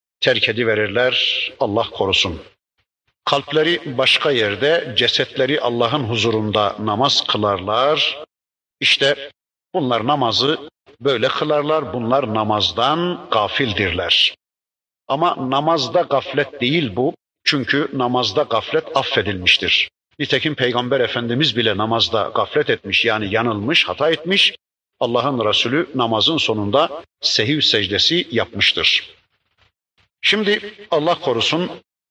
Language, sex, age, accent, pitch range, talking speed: Turkish, male, 50-69, native, 115-155 Hz, 95 wpm